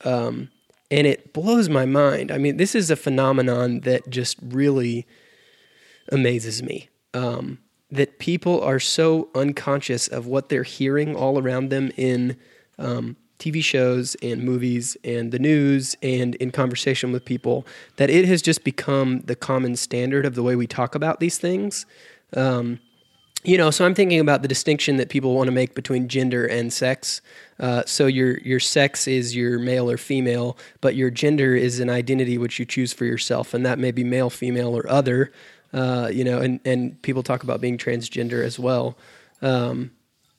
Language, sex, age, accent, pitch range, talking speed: English, male, 20-39, American, 125-145 Hz, 180 wpm